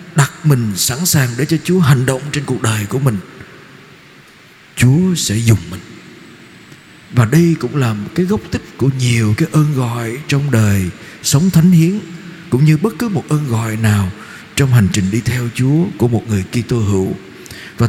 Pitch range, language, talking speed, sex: 115-165 Hz, Vietnamese, 190 wpm, male